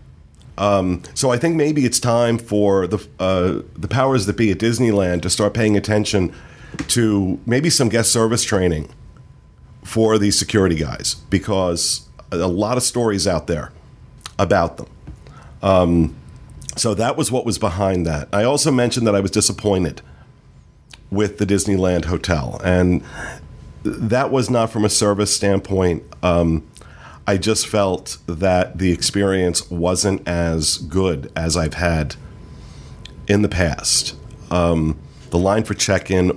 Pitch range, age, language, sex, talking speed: 85-105 Hz, 40-59, English, male, 145 wpm